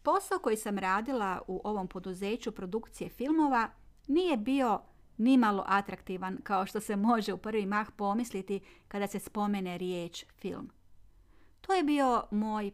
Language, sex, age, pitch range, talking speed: Croatian, female, 40-59, 185-240 Hz, 140 wpm